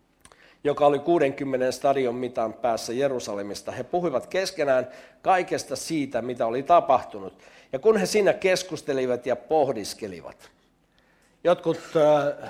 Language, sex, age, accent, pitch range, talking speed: Finnish, male, 60-79, native, 125-155 Hz, 110 wpm